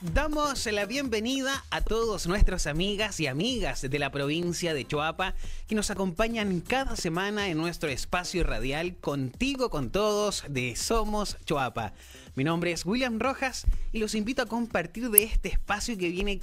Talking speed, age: 160 wpm, 30-49